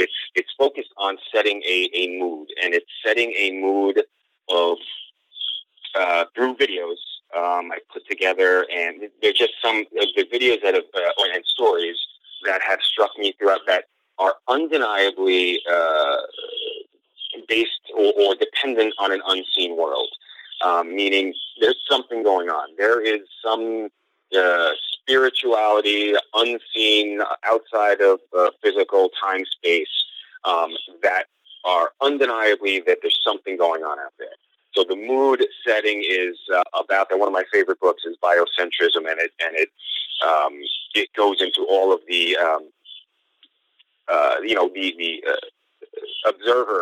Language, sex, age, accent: English, male, 30-49, American